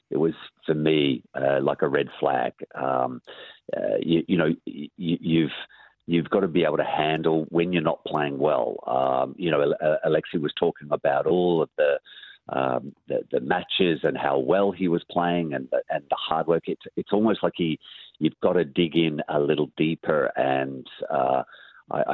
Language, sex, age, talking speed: English, male, 50-69, 185 wpm